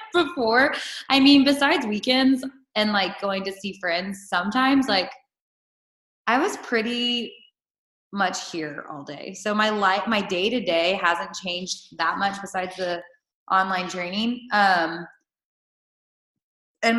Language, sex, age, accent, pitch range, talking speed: English, female, 20-39, American, 175-220 Hz, 130 wpm